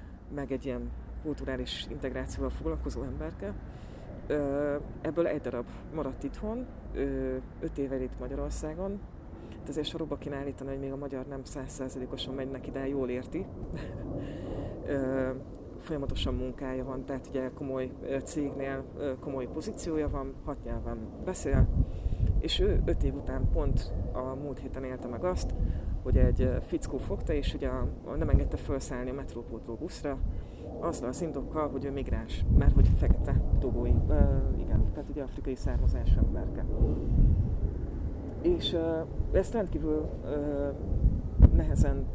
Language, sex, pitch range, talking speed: Hungarian, female, 105-140 Hz, 130 wpm